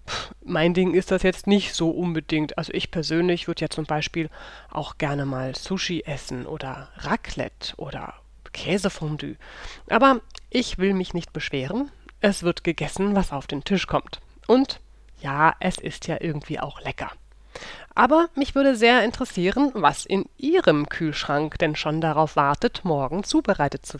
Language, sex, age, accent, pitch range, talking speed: German, female, 30-49, German, 155-200 Hz, 155 wpm